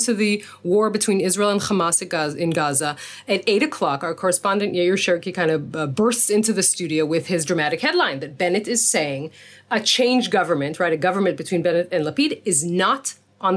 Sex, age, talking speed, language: female, 30-49, 190 wpm, English